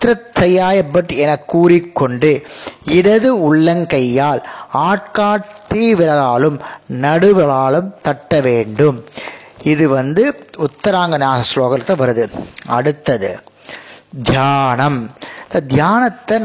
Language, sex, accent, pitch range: Tamil, male, native, 145-205 Hz